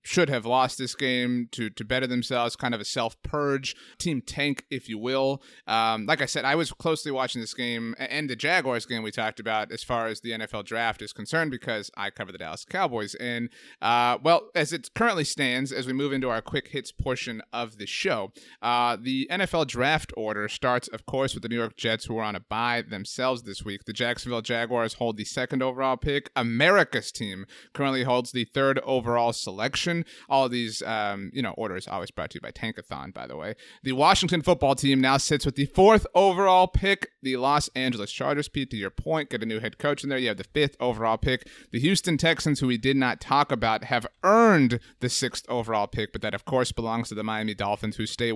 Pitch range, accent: 115-150 Hz, American